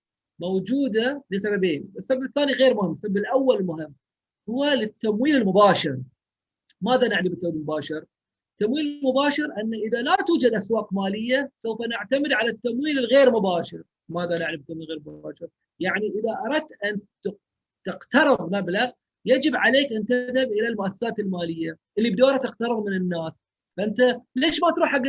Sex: male